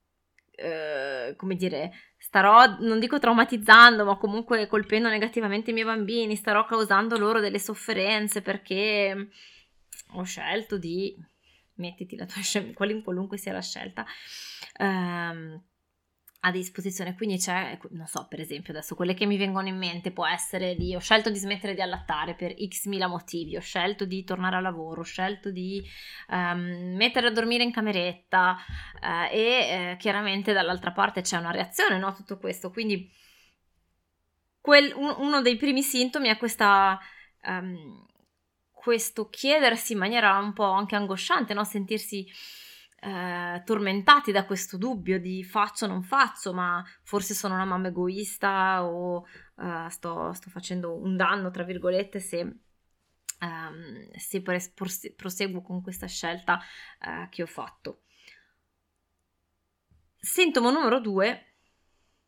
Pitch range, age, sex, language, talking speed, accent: 180-220 Hz, 20-39, female, Italian, 145 wpm, native